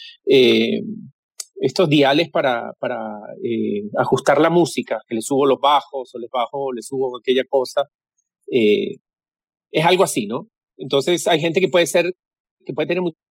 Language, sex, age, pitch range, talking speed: English, male, 40-59, 145-195 Hz, 160 wpm